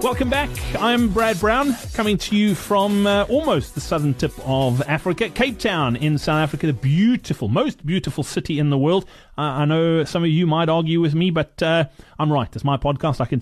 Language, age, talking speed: English, 30-49, 215 wpm